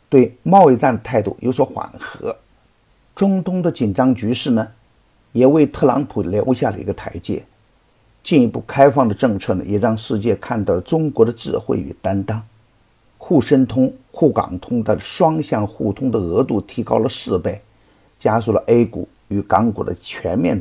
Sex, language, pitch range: male, Chinese, 110-135 Hz